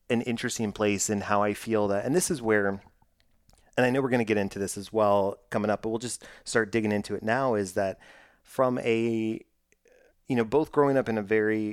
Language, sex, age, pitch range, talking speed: English, male, 30-49, 100-120 Hz, 230 wpm